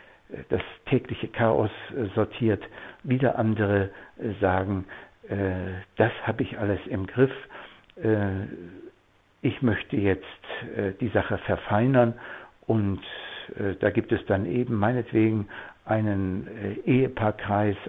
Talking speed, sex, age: 110 wpm, male, 60-79